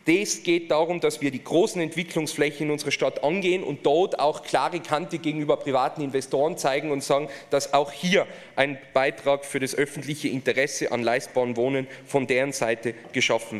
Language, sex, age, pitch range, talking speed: German, male, 30-49, 150-195 Hz, 170 wpm